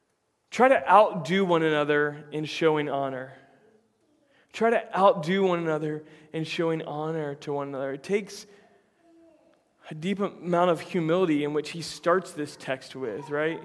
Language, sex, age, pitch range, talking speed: English, male, 20-39, 155-190 Hz, 150 wpm